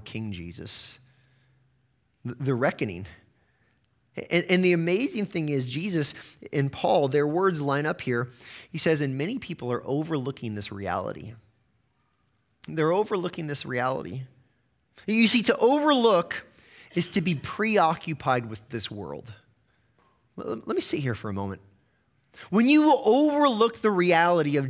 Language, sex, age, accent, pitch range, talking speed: English, male, 30-49, American, 125-175 Hz, 135 wpm